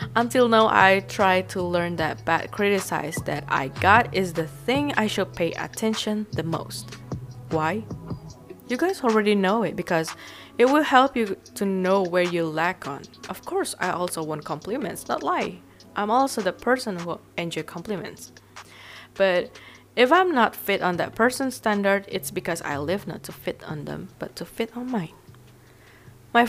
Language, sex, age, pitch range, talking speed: English, female, 20-39, 165-230 Hz, 175 wpm